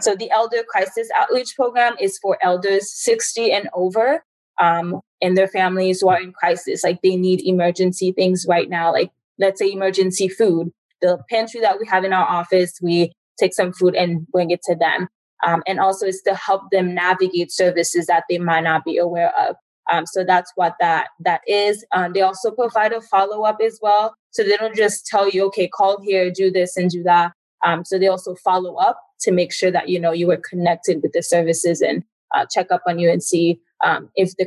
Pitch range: 180-215 Hz